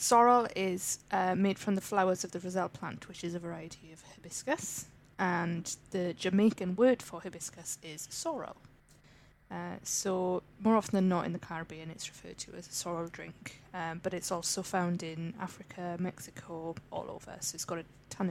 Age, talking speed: 20-39, 185 wpm